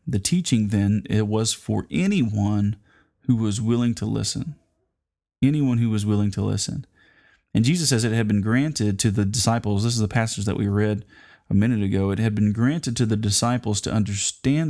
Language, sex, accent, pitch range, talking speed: English, male, American, 105-125 Hz, 190 wpm